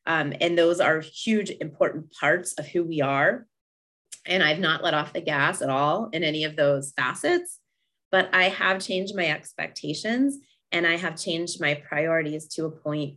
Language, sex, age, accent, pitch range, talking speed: English, female, 20-39, American, 150-180 Hz, 180 wpm